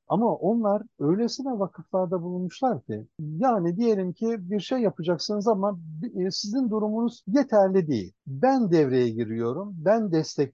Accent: Turkish